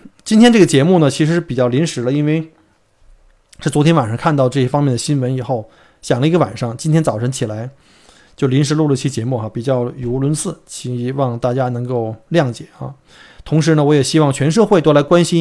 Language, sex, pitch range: Chinese, male, 130-155 Hz